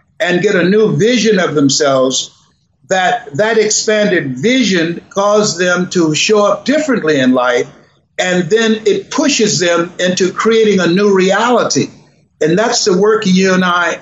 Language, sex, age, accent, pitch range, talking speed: English, male, 60-79, American, 160-215 Hz, 155 wpm